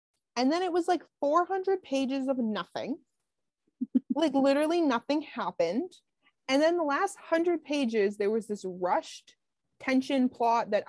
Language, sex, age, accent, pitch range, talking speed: English, female, 20-39, American, 205-280 Hz, 145 wpm